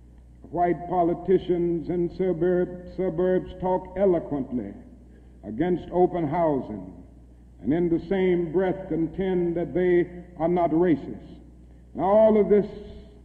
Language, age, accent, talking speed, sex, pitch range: English, 60-79, American, 110 wpm, male, 155-180 Hz